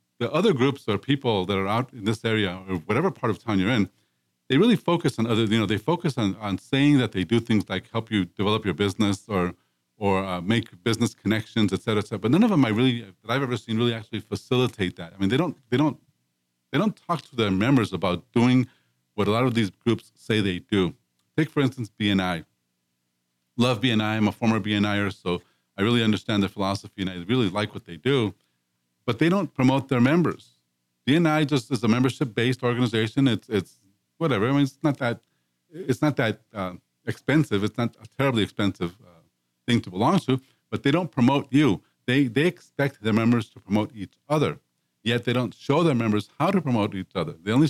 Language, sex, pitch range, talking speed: English, male, 95-130 Hz, 215 wpm